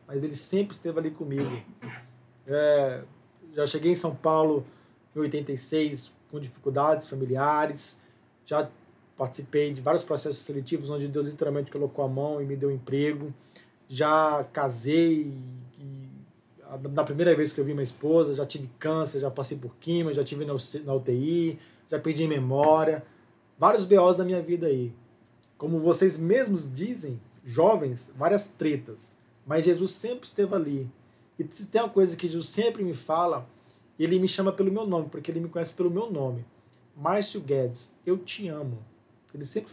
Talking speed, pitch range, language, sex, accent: 160 wpm, 125-160 Hz, Portuguese, male, Brazilian